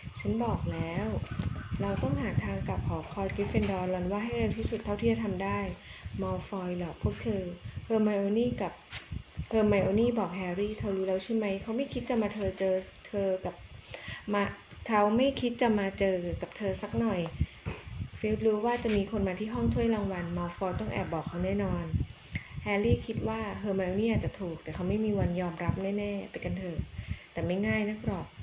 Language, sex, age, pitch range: English, female, 20-39, 175-220 Hz